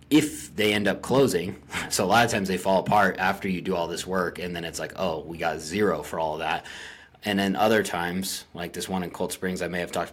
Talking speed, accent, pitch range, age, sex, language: 260 wpm, American, 85-95 Hz, 30-49, male, English